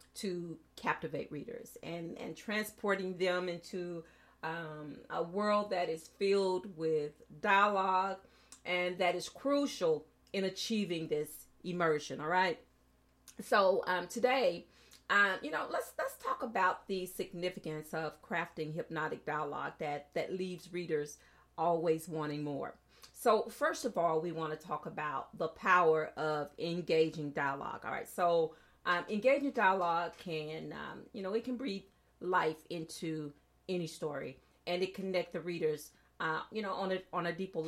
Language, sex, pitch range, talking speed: English, female, 155-195 Hz, 150 wpm